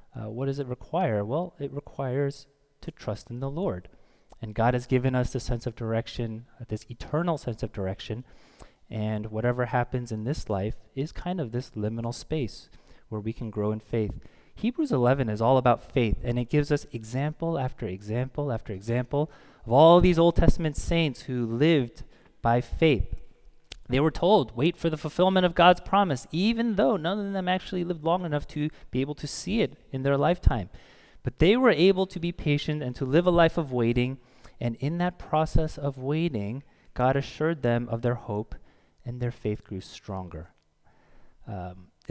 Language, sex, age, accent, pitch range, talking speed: English, male, 30-49, American, 115-150 Hz, 185 wpm